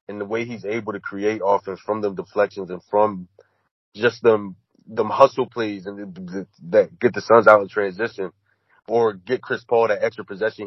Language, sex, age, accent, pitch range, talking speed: English, male, 30-49, American, 100-140 Hz, 195 wpm